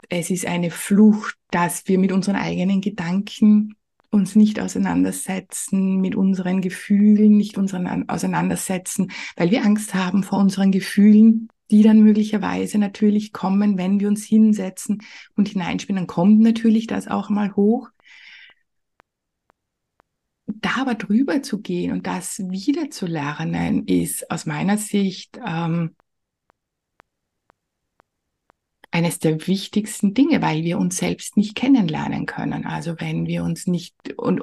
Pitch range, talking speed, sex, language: 190-225 Hz, 125 wpm, female, German